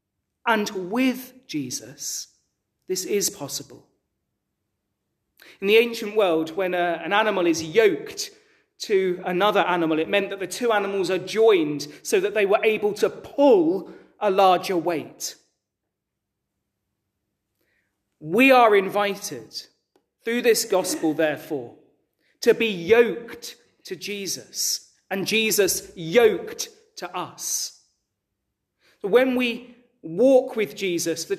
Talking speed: 115 wpm